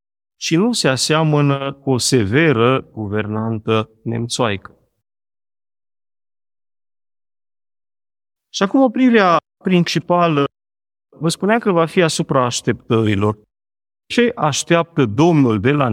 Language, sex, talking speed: Romanian, male, 95 wpm